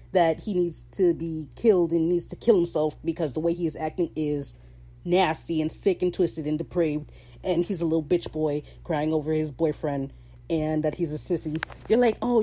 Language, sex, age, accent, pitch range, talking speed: English, female, 30-49, American, 155-215 Hz, 205 wpm